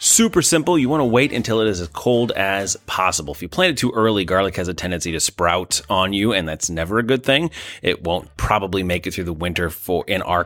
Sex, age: male, 30-49